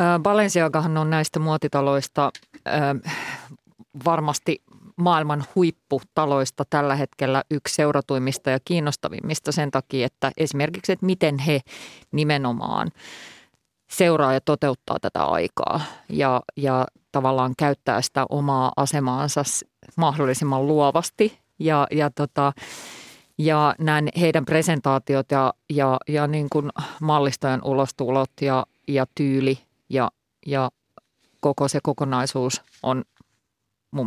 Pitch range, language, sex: 135-160 Hz, Finnish, female